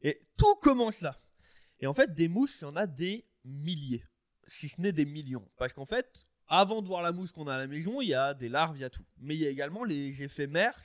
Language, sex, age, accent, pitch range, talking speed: French, male, 20-39, French, 140-215 Hz, 270 wpm